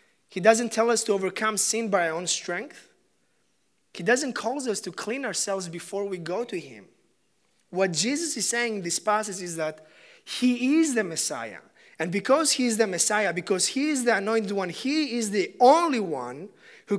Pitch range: 175-230 Hz